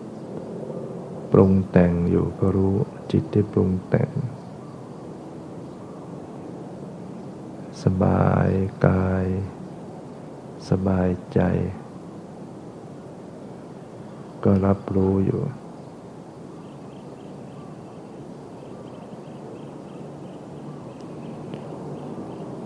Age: 60-79